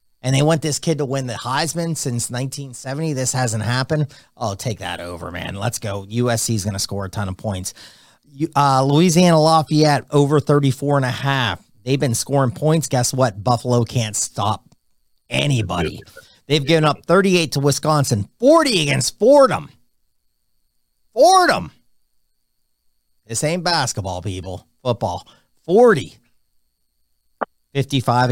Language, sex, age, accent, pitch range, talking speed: English, male, 40-59, American, 105-140 Hz, 140 wpm